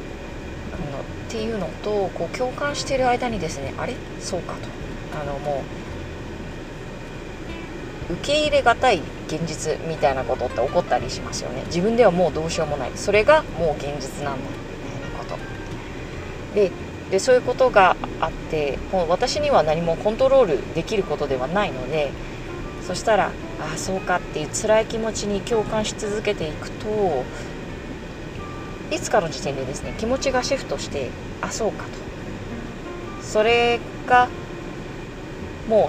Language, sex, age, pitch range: Japanese, female, 30-49, 175-245 Hz